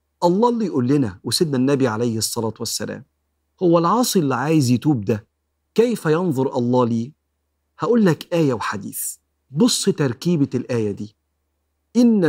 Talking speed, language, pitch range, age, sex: 135 wpm, Arabic, 110-145 Hz, 50-69, male